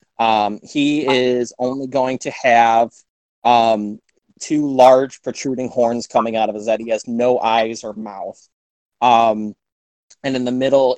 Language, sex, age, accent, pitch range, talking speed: English, male, 30-49, American, 110-135 Hz, 155 wpm